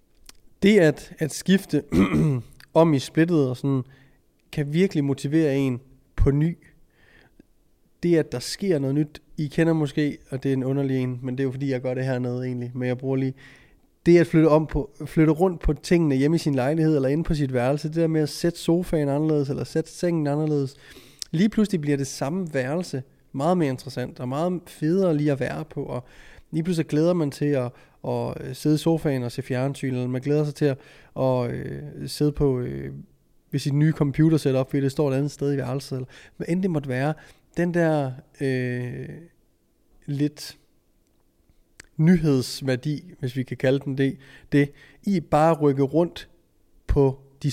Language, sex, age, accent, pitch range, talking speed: Danish, male, 20-39, native, 130-160 Hz, 190 wpm